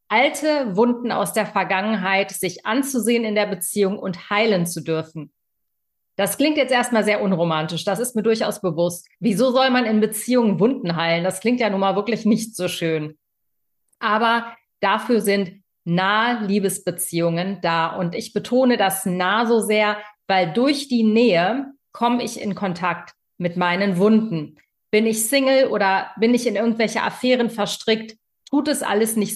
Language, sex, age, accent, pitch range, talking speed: German, female, 40-59, German, 195-235 Hz, 160 wpm